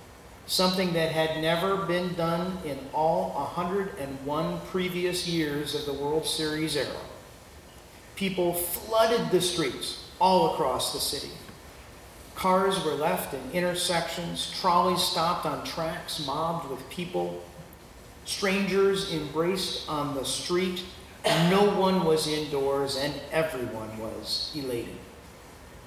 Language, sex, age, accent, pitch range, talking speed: English, male, 40-59, American, 135-175 Hz, 115 wpm